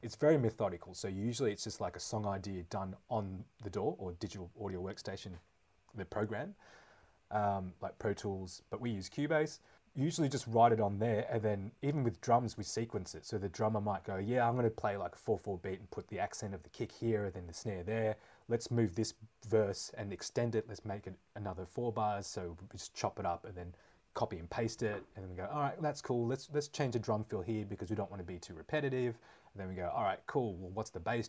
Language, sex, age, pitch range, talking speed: English, male, 30-49, 95-115 Hz, 240 wpm